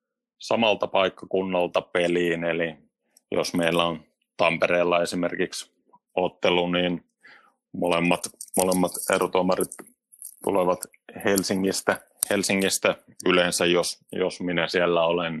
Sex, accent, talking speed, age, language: male, native, 90 wpm, 30-49, Finnish